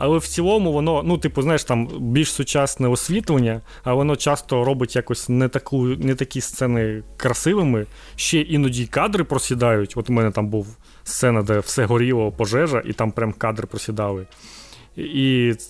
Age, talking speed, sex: 20-39, 160 wpm, male